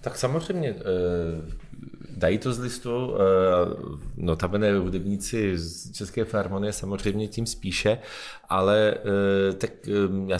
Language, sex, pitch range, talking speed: Czech, male, 90-105 Hz, 120 wpm